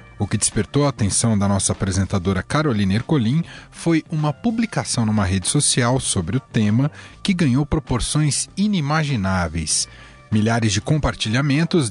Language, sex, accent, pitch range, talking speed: Portuguese, male, Brazilian, 110-150 Hz, 130 wpm